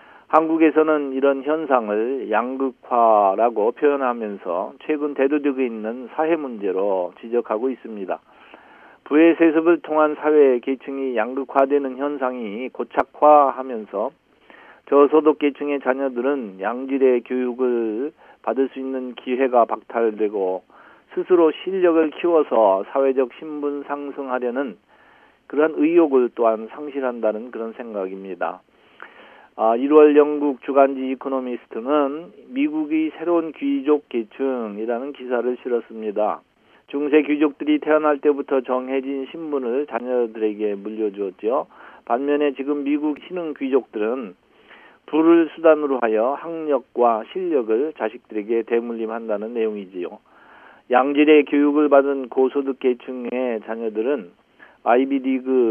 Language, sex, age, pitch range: Korean, male, 50-69, 120-150 Hz